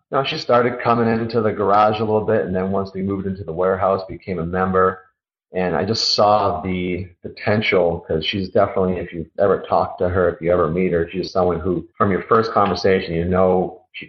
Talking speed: 215 wpm